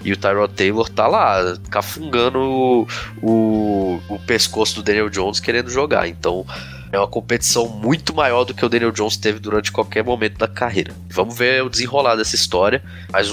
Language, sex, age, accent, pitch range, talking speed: Portuguese, male, 20-39, Brazilian, 85-110 Hz, 175 wpm